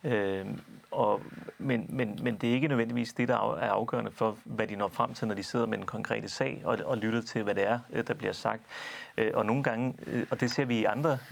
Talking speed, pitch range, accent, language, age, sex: 230 wpm, 110-130 Hz, native, Danish, 30-49, male